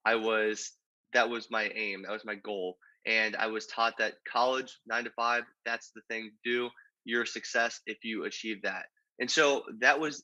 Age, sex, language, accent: 20-39, male, English, American